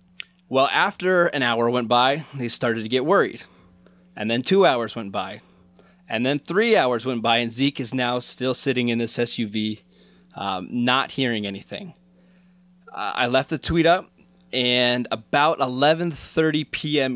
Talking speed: 160 wpm